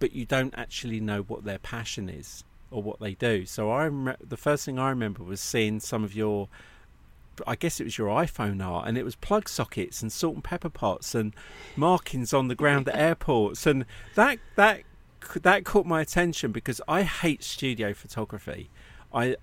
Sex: male